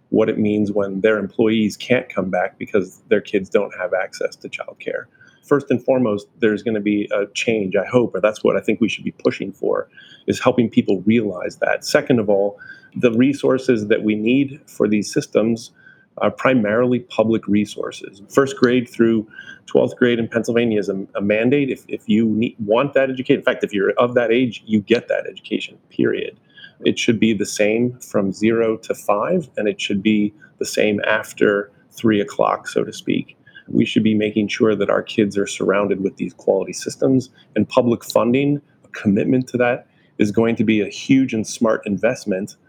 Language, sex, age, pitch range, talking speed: English, male, 30-49, 105-125 Hz, 195 wpm